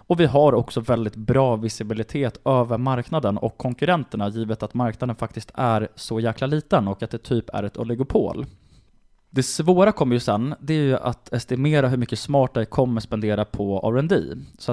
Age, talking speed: 20-39, 180 wpm